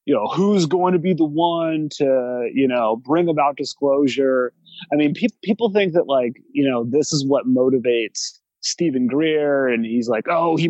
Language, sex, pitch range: English, male, 125-165 Hz